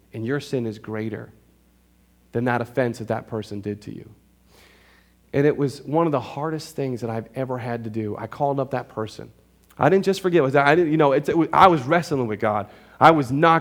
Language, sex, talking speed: English, male, 205 wpm